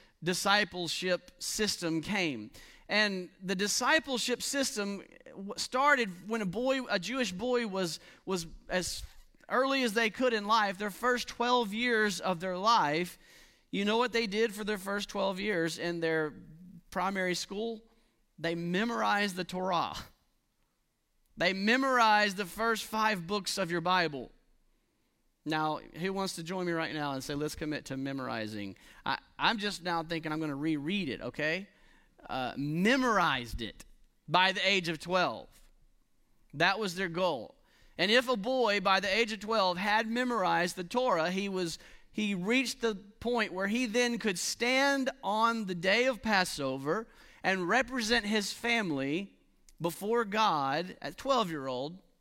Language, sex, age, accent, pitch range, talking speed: English, male, 40-59, American, 170-230 Hz, 150 wpm